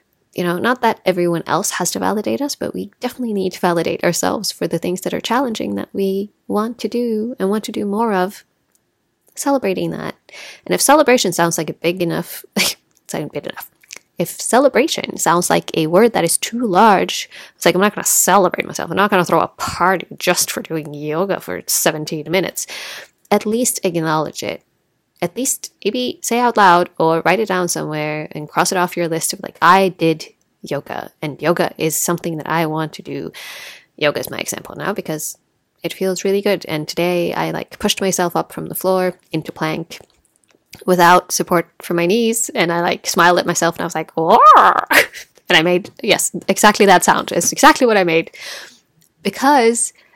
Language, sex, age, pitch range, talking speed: English, female, 20-39, 165-210 Hz, 195 wpm